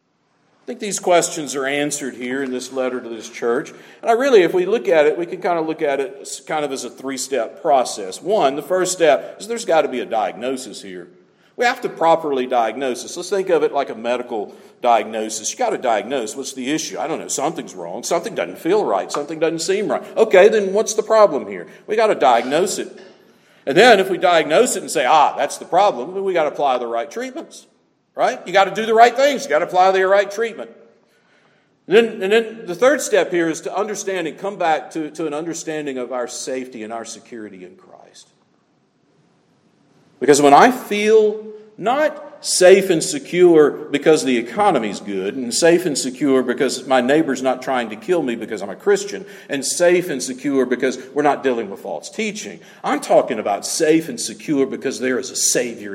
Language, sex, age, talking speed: English, male, 50-69, 220 wpm